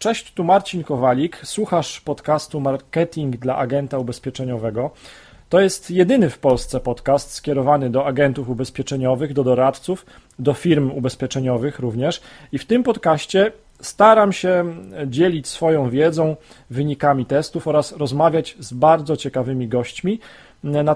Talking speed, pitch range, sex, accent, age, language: 125 wpm, 130-165 Hz, male, native, 40-59, Polish